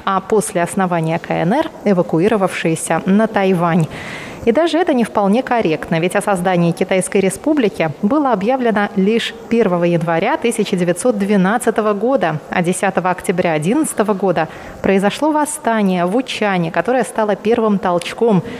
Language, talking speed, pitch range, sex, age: Russian, 125 wpm, 180-235 Hz, female, 30-49